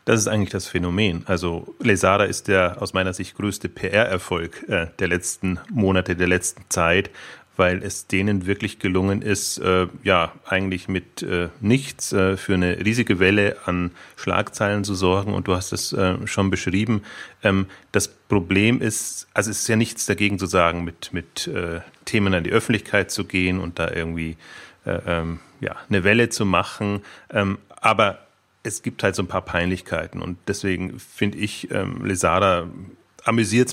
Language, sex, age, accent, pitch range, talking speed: German, male, 30-49, German, 90-105 Hz, 165 wpm